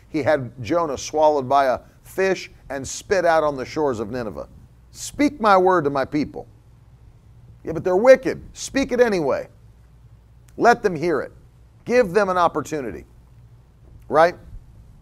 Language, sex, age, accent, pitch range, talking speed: English, male, 40-59, American, 125-205 Hz, 150 wpm